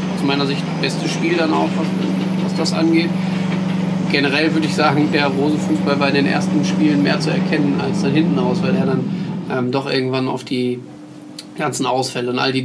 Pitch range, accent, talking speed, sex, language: 130-150 Hz, German, 200 wpm, male, German